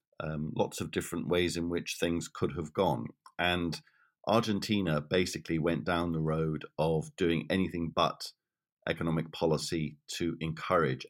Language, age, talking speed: English, 50-69, 140 wpm